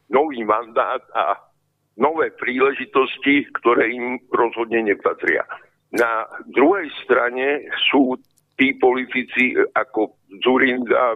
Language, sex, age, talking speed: Slovak, male, 60-79, 90 wpm